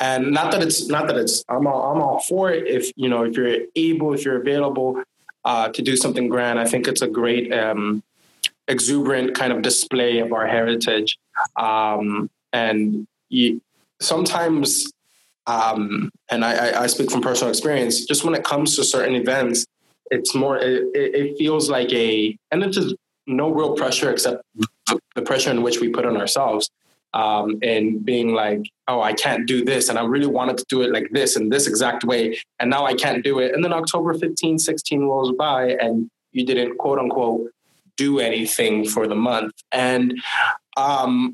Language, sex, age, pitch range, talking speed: English, male, 20-39, 115-145 Hz, 185 wpm